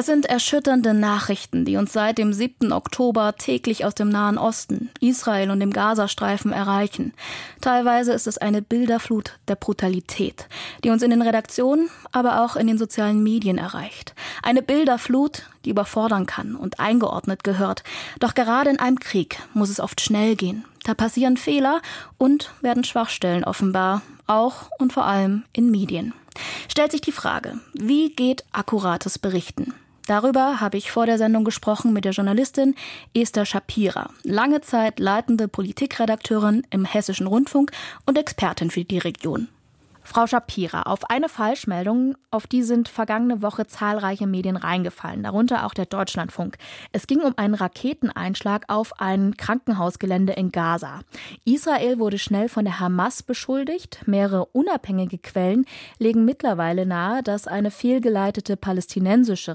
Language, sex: German, female